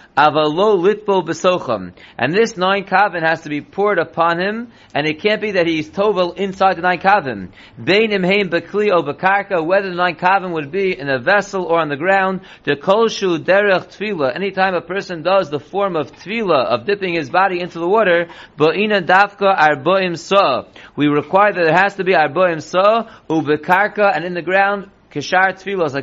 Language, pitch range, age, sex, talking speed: English, 165-200 Hz, 40-59, male, 145 wpm